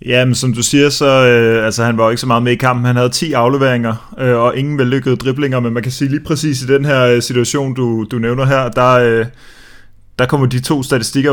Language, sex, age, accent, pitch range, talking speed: Danish, male, 20-39, native, 115-140 Hz, 260 wpm